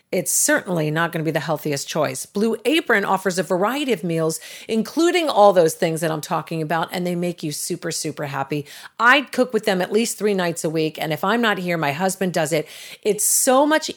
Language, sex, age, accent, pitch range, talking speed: English, female, 40-59, American, 170-215 Hz, 230 wpm